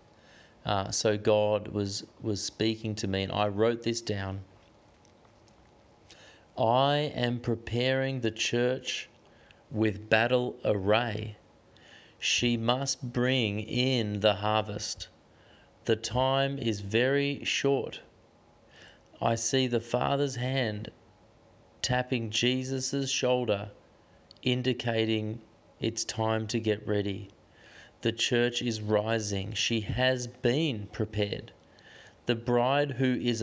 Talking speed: 105 wpm